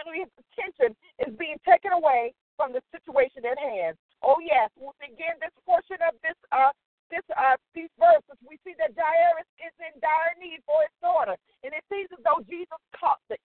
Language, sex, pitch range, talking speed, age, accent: English, female, 280-355 Hz, 190 wpm, 40-59, American